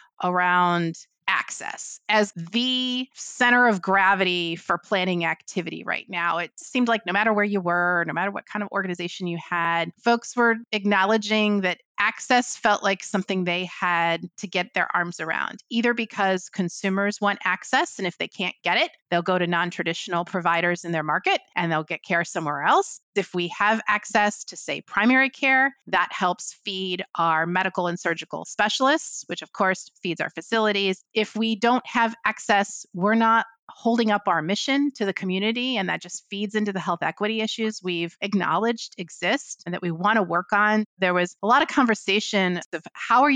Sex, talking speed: female, 185 wpm